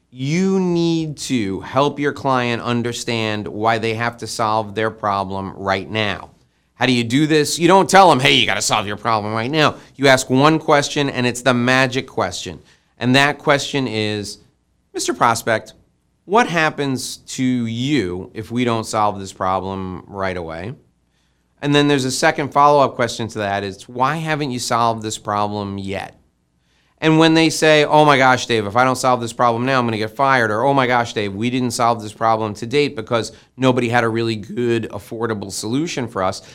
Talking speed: 195 wpm